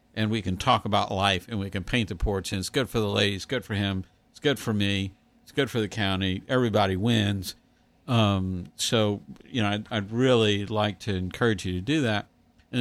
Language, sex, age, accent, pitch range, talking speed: English, male, 50-69, American, 100-120 Hz, 220 wpm